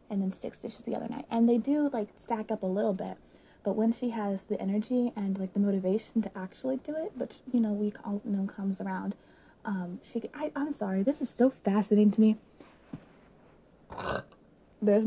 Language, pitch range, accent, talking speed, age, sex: English, 210-290 Hz, American, 195 wpm, 20-39, female